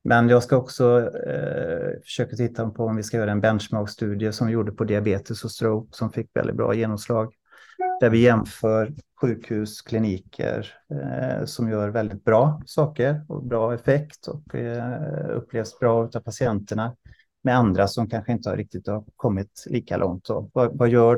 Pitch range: 105-120 Hz